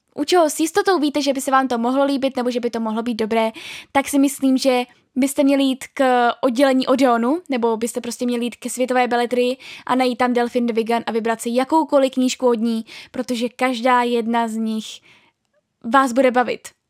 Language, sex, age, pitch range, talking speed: Czech, female, 10-29, 235-270 Hz, 205 wpm